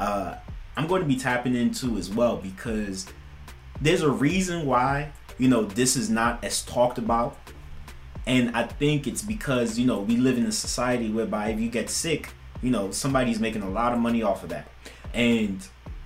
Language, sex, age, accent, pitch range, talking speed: English, male, 20-39, American, 95-130 Hz, 190 wpm